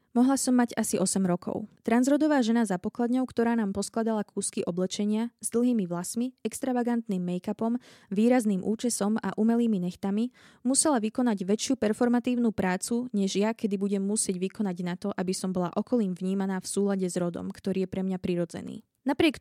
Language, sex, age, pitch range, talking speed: Slovak, female, 20-39, 195-235 Hz, 165 wpm